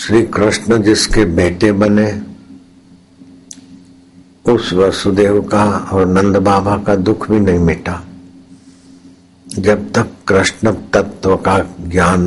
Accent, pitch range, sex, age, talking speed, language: native, 90-95 Hz, male, 60-79, 110 wpm, Hindi